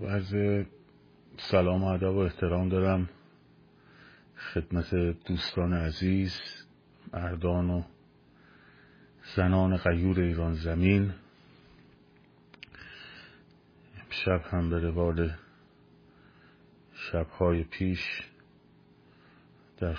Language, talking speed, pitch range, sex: Persian, 70 wpm, 80-90 Hz, male